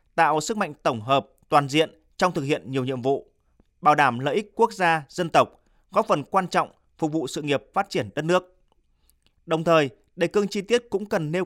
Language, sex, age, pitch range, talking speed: Vietnamese, male, 30-49, 140-185 Hz, 220 wpm